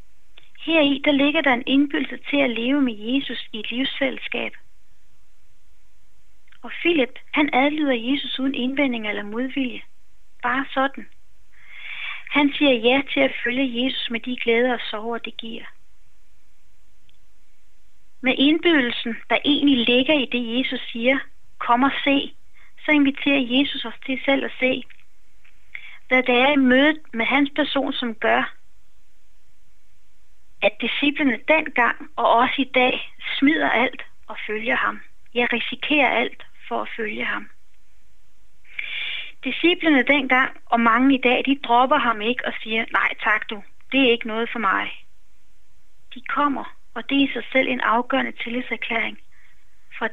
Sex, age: female, 30-49